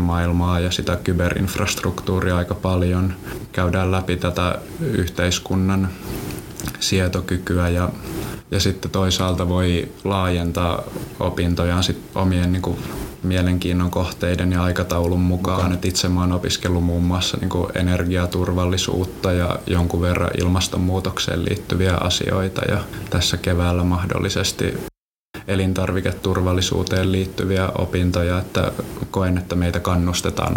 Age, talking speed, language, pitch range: 20-39, 105 wpm, Finnish, 90-95 Hz